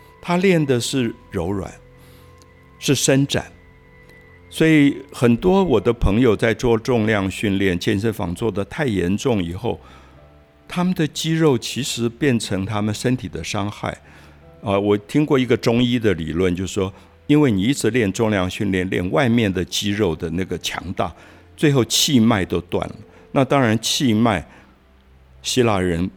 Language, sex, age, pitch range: Chinese, male, 60-79, 90-120 Hz